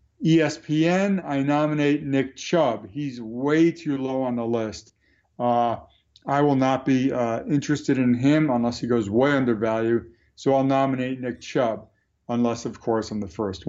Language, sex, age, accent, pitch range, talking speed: English, male, 50-69, American, 120-150 Hz, 165 wpm